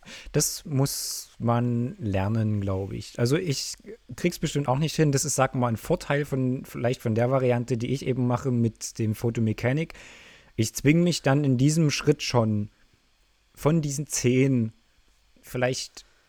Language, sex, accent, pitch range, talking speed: German, male, German, 110-140 Hz, 160 wpm